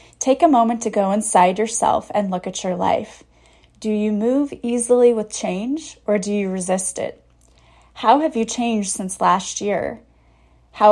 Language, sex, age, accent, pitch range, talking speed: English, female, 30-49, American, 185-230 Hz, 170 wpm